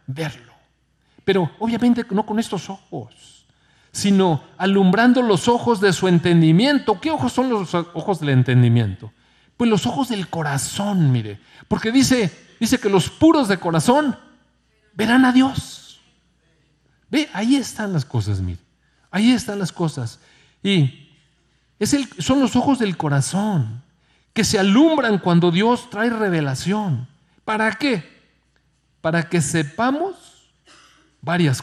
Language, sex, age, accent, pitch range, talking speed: Spanish, male, 40-59, Mexican, 135-210 Hz, 135 wpm